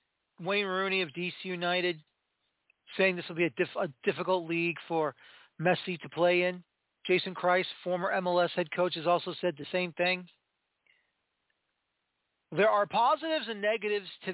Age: 40-59